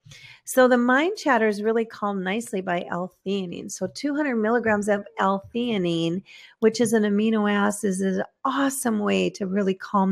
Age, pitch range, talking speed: 40-59, 190-235 Hz, 160 wpm